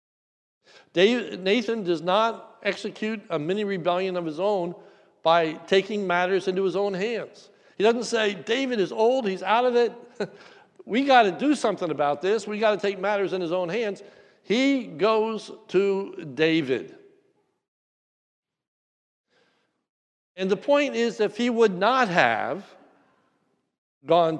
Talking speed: 140 wpm